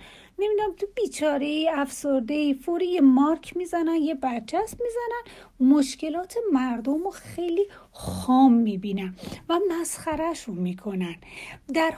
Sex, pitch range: female, 220-310 Hz